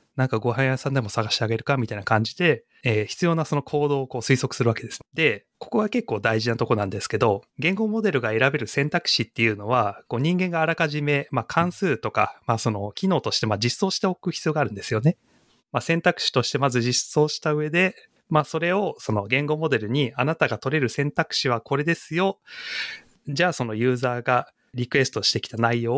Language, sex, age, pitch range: Japanese, male, 30-49, 115-155 Hz